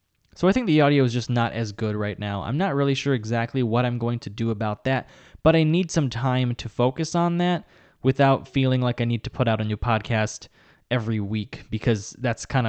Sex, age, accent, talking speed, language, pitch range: male, 20-39, American, 230 wpm, English, 110-140 Hz